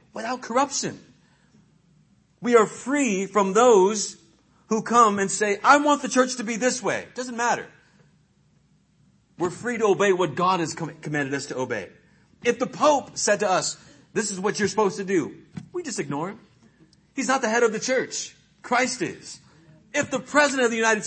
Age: 40-59